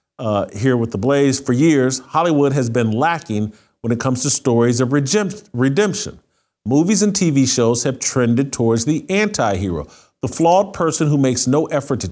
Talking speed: 175 wpm